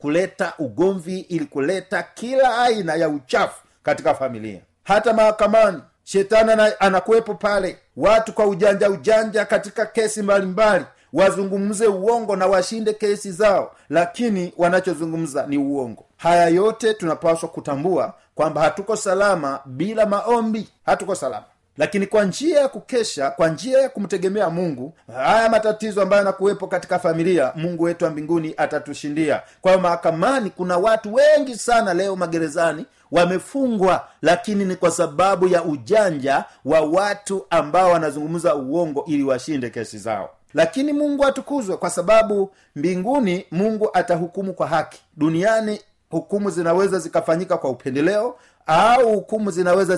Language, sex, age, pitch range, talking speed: Swahili, male, 50-69, 165-215 Hz, 130 wpm